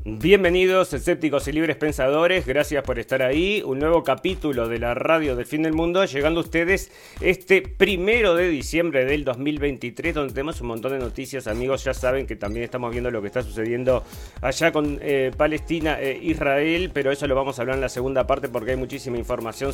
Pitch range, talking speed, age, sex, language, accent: 120-150 Hz, 200 wpm, 40-59, male, Spanish, Argentinian